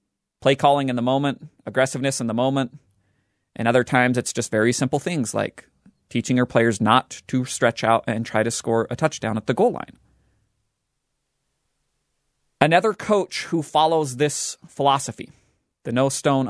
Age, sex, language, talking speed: 30-49, male, English, 160 wpm